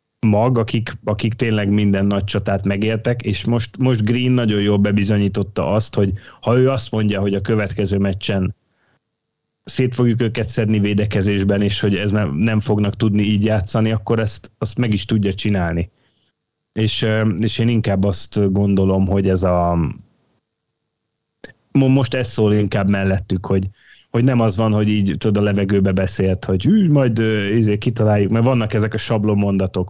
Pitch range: 100-115 Hz